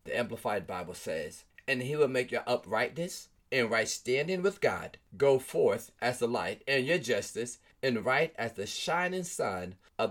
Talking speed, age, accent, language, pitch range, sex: 180 wpm, 40-59, American, English, 110-145 Hz, male